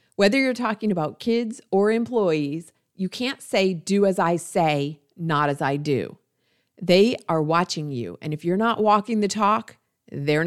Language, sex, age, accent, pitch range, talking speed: English, female, 40-59, American, 155-200 Hz, 170 wpm